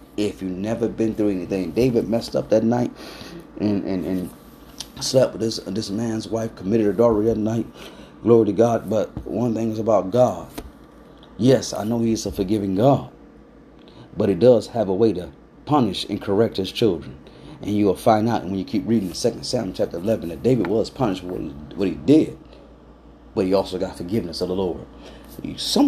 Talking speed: 195 wpm